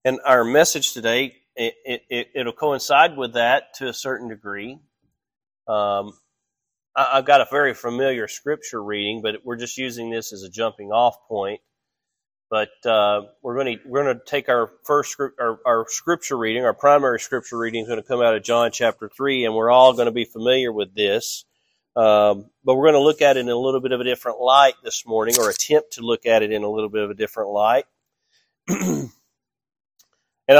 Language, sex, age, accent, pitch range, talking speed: English, male, 40-59, American, 115-150 Hz, 200 wpm